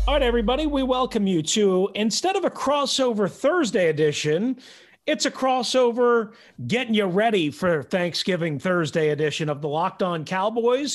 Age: 40-59